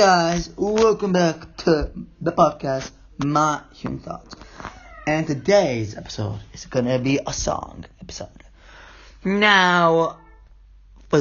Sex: male